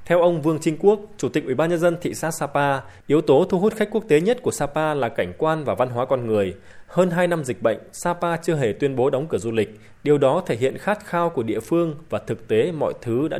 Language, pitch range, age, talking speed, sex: Vietnamese, 120-170 Hz, 20-39, 275 wpm, male